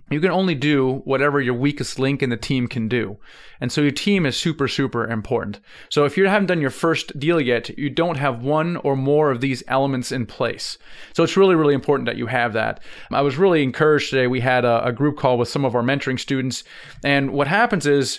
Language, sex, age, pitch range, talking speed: English, male, 30-49, 125-150 Hz, 235 wpm